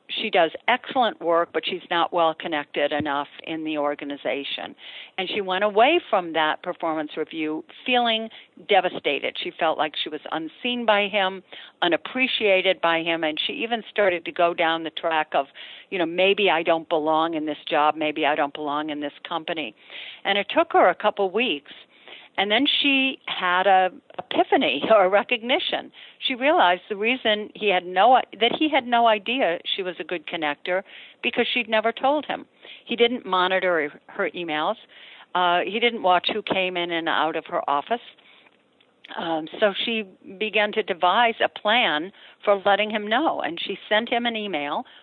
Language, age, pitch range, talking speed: English, 50-69, 165-235 Hz, 175 wpm